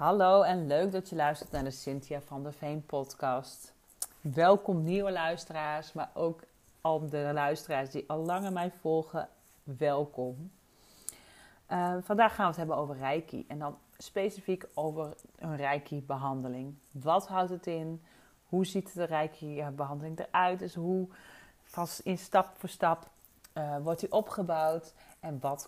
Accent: Dutch